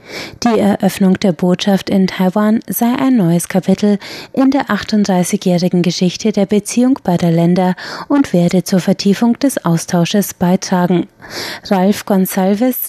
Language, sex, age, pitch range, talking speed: German, female, 30-49, 180-220 Hz, 125 wpm